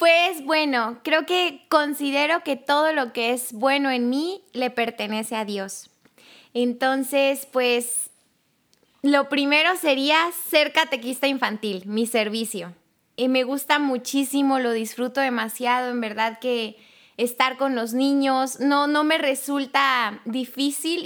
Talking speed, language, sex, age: 130 wpm, Spanish, female, 20-39